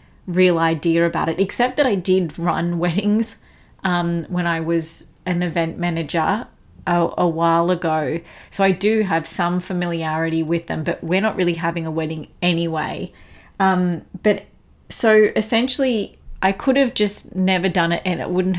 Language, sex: English, female